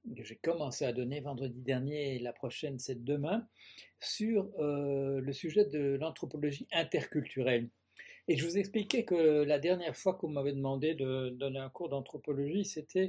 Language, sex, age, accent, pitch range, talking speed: French, male, 60-79, French, 130-165 Hz, 170 wpm